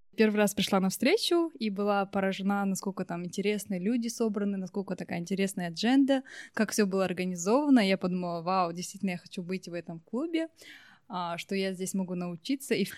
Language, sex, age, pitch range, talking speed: Russian, female, 20-39, 190-230 Hz, 165 wpm